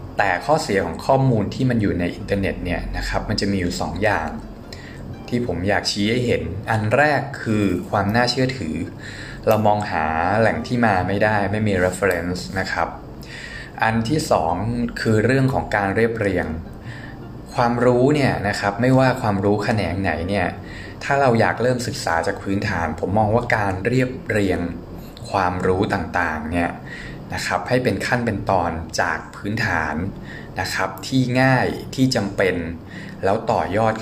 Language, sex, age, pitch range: Thai, male, 20-39, 95-120 Hz